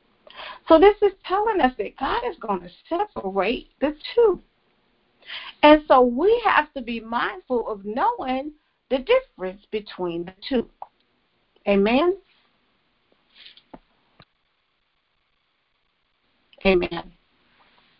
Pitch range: 180-260 Hz